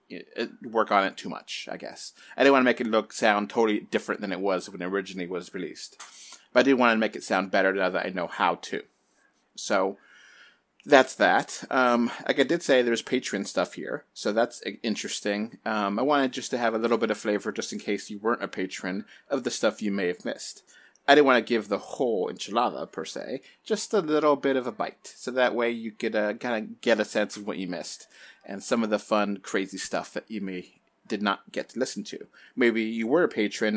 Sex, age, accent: male, 30-49, American